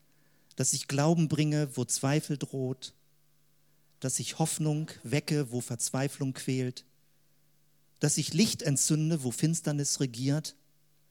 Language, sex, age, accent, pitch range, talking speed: German, male, 50-69, German, 130-155 Hz, 115 wpm